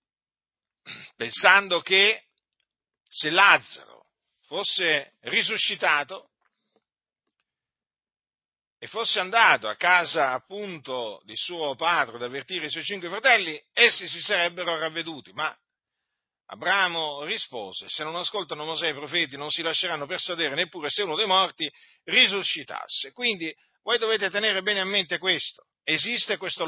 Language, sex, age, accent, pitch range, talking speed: Italian, male, 50-69, native, 160-220 Hz, 120 wpm